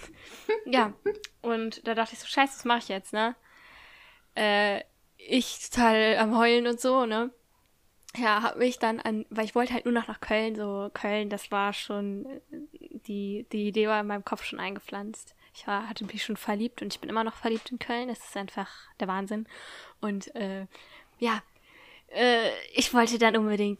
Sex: female